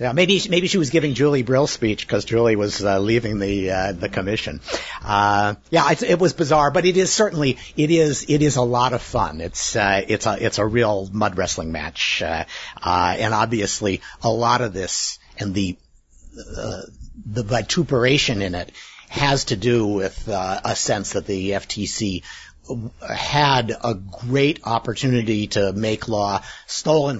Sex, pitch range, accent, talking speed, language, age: male, 95-135 Hz, American, 175 wpm, English, 50-69